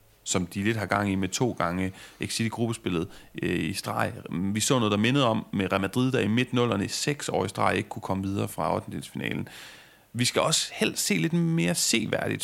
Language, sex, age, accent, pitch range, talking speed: Danish, male, 30-49, native, 95-120 Hz, 225 wpm